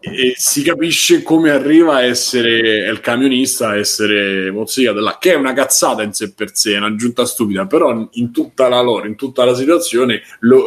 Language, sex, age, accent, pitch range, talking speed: Italian, male, 20-39, native, 105-135 Hz, 180 wpm